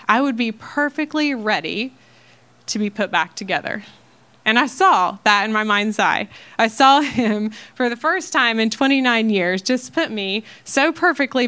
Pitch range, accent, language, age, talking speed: 200-245 Hz, American, English, 20-39, 170 wpm